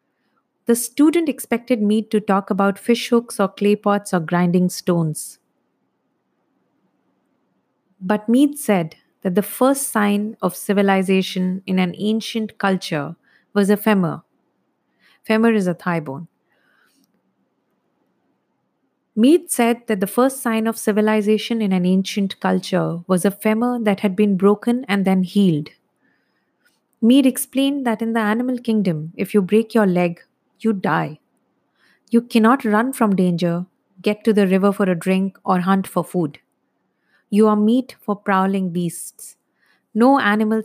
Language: English